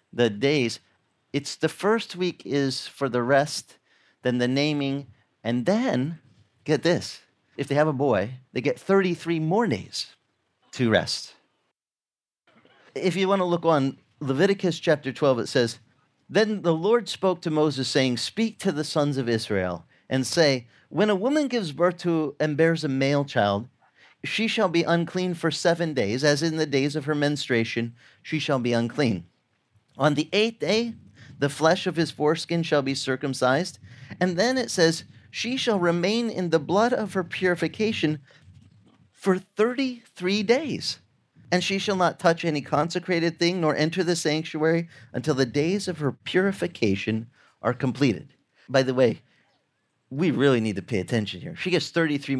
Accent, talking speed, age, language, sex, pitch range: American, 165 wpm, 40-59, English, male, 125-180 Hz